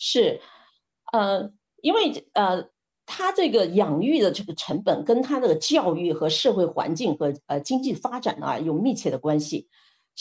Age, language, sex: 50-69, Chinese, female